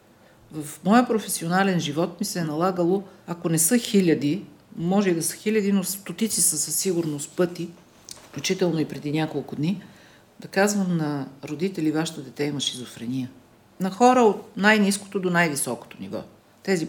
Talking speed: 155 wpm